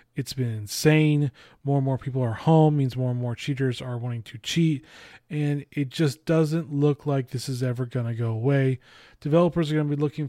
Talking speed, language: 215 wpm, English